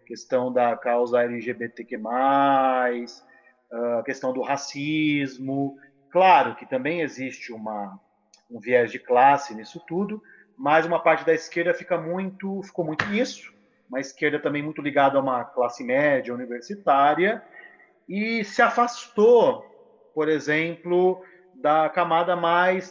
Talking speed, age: 125 wpm, 30-49